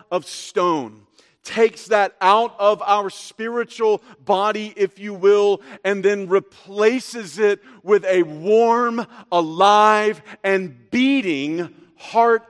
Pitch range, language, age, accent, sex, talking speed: 145-225 Hz, English, 40-59, American, male, 110 wpm